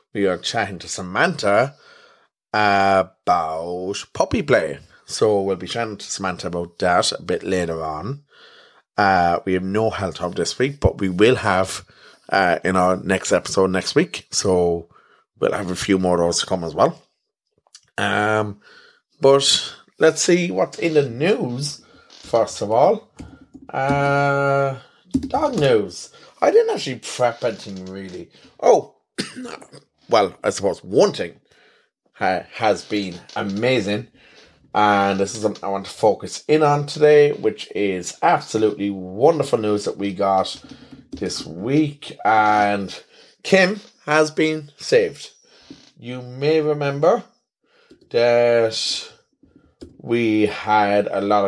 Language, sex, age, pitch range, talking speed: English, male, 30-49, 95-145 Hz, 135 wpm